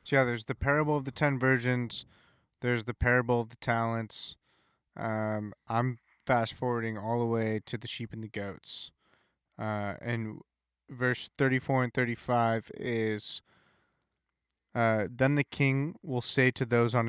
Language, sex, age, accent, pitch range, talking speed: English, male, 20-39, American, 105-125 Hz, 150 wpm